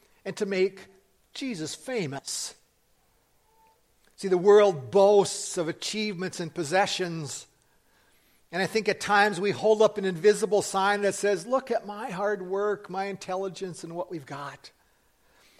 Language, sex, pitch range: English, male, 155-205 Hz